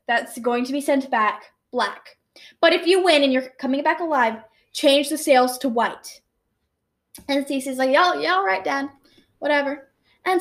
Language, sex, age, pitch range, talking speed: English, female, 10-29, 245-315 Hz, 175 wpm